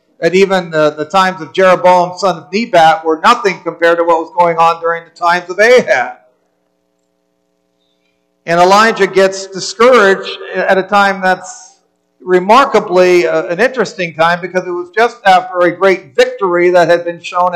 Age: 50-69